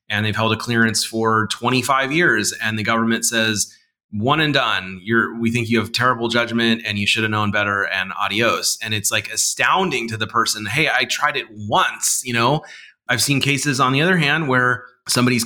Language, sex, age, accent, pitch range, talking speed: English, male, 30-49, American, 110-130 Hz, 205 wpm